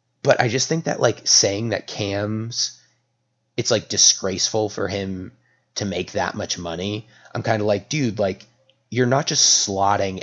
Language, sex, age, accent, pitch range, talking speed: English, male, 30-49, American, 100-125 Hz, 170 wpm